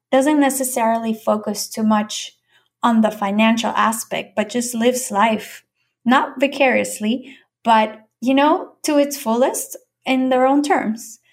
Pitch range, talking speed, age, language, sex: 210-250 Hz, 130 wpm, 10-29, English, female